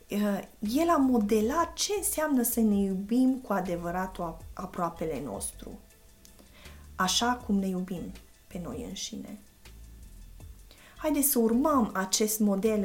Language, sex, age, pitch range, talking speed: Romanian, female, 20-39, 180-225 Hz, 110 wpm